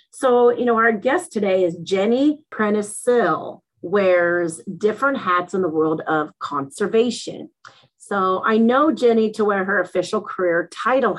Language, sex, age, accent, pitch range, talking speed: English, female, 40-59, American, 165-215 Hz, 145 wpm